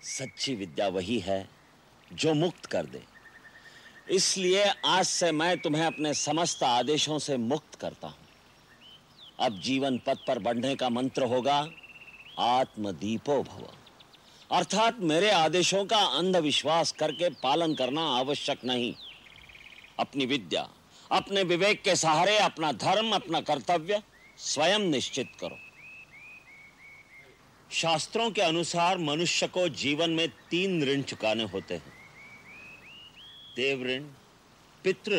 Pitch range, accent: 130-175 Hz, native